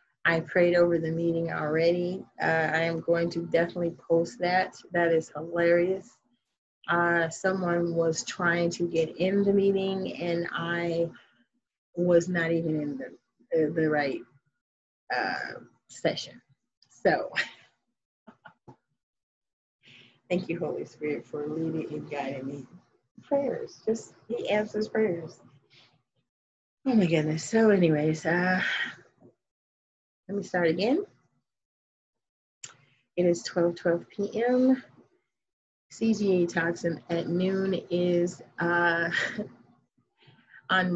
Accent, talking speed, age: American, 110 wpm, 30-49